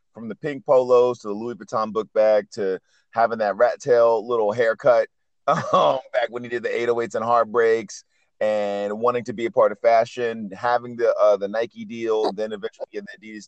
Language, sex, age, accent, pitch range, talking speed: English, male, 30-49, American, 110-135 Hz, 200 wpm